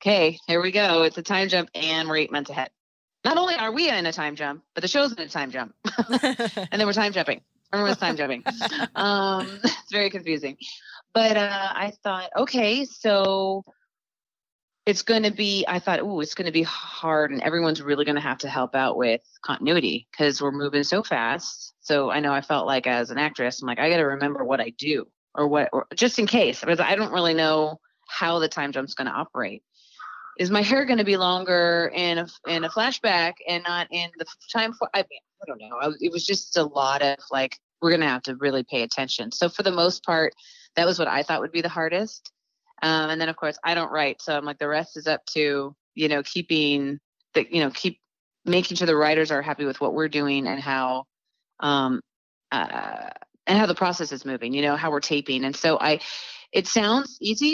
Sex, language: female, English